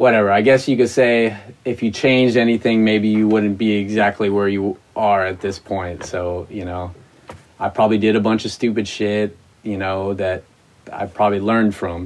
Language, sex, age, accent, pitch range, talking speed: English, male, 30-49, American, 95-110 Hz, 195 wpm